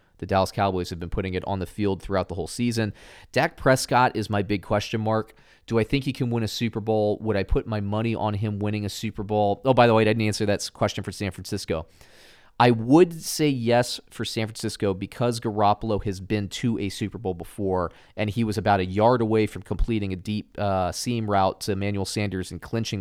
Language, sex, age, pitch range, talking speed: English, male, 30-49, 95-110 Hz, 230 wpm